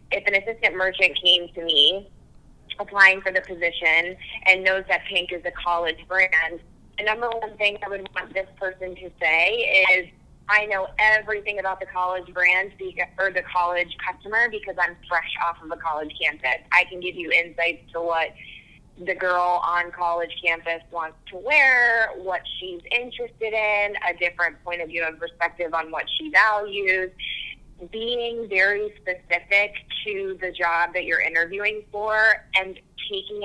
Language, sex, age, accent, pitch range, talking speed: English, female, 20-39, American, 170-200 Hz, 165 wpm